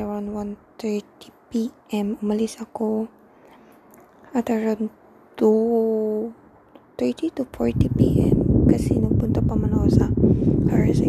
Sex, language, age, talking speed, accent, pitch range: female, Filipino, 20-39, 90 wpm, native, 140-230 Hz